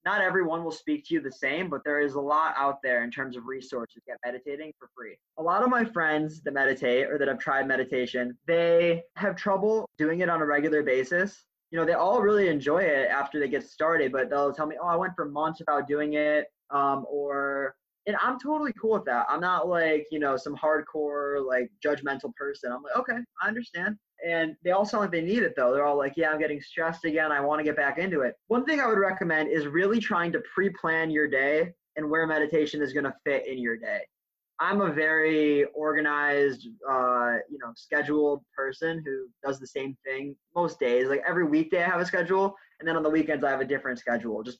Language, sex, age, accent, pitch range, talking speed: English, male, 20-39, American, 140-175 Hz, 230 wpm